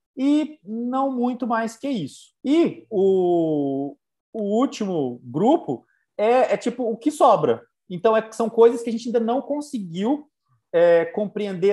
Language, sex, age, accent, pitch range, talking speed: Portuguese, male, 30-49, Brazilian, 170-230 Hz, 140 wpm